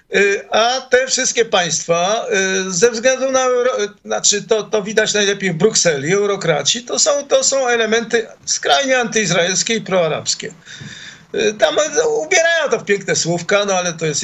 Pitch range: 160-225 Hz